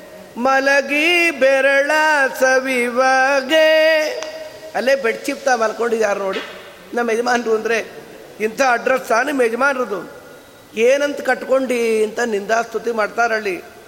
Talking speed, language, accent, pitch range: 90 wpm, Kannada, native, 225-305 Hz